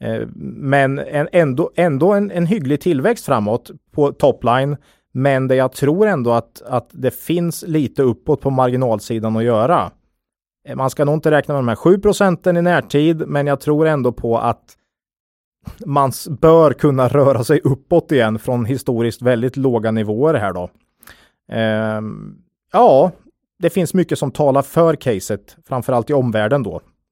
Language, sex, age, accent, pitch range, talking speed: Swedish, male, 30-49, Norwegian, 115-155 Hz, 150 wpm